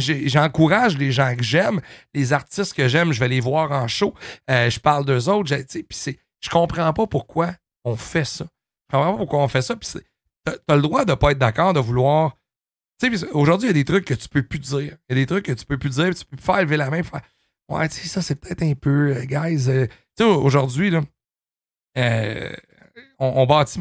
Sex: male